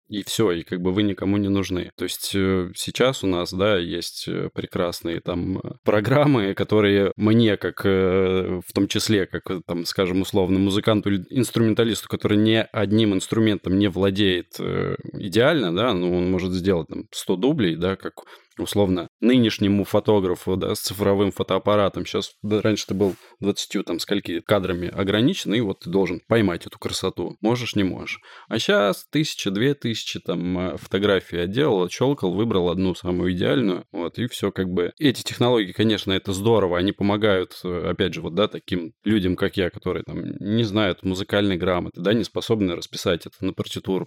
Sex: male